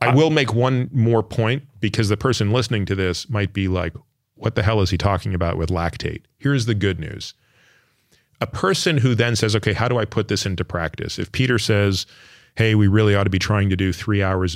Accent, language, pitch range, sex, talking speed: American, English, 100-130 Hz, male, 225 wpm